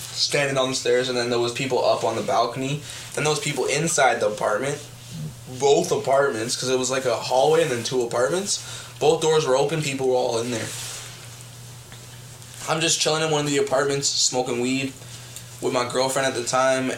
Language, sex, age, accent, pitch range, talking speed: English, male, 10-29, American, 120-140 Hz, 200 wpm